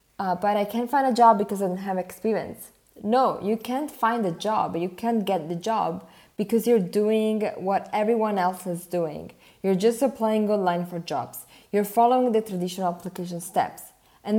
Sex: female